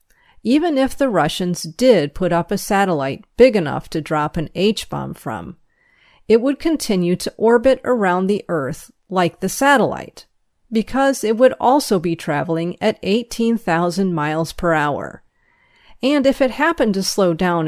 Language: English